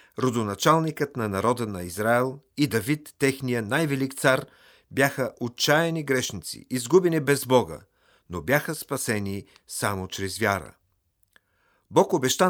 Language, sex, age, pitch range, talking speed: Bulgarian, male, 50-69, 105-140 Hz, 115 wpm